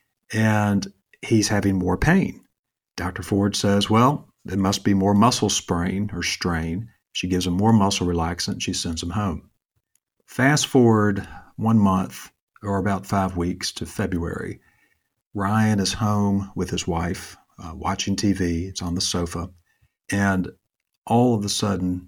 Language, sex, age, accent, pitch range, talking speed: English, male, 50-69, American, 90-100 Hz, 150 wpm